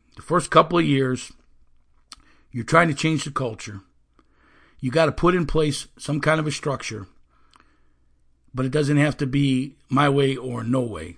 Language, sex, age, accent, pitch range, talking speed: English, male, 50-69, American, 125-160 Hz, 175 wpm